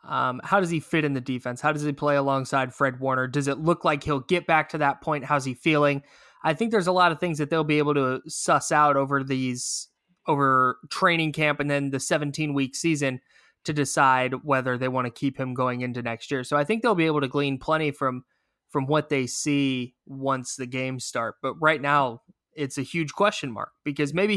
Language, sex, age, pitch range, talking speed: English, male, 20-39, 135-160 Hz, 225 wpm